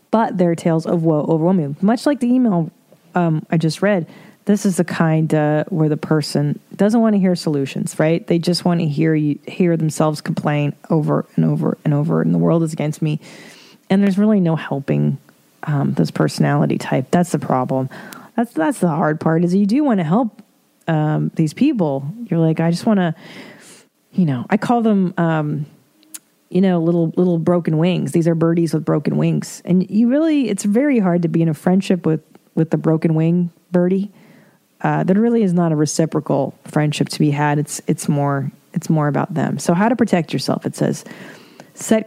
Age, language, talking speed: 40-59, English, 200 wpm